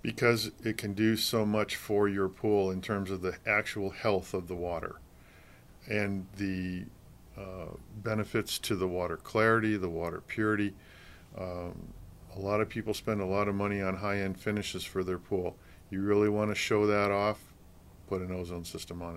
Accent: American